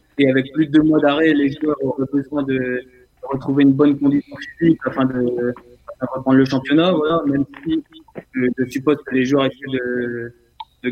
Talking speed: 190 wpm